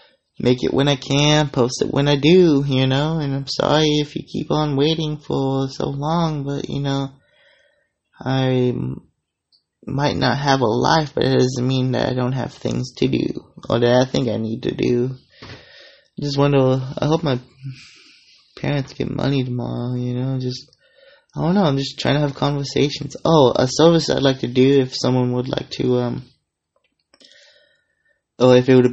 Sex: male